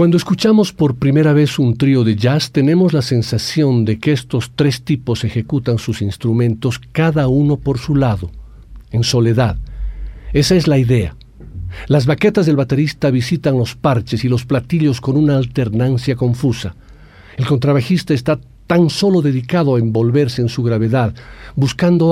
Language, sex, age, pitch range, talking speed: Spanish, male, 50-69, 115-145 Hz, 155 wpm